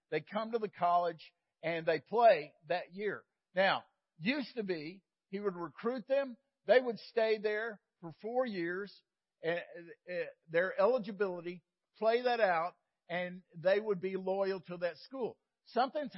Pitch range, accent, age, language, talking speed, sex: 180-235 Hz, American, 50-69, English, 145 wpm, male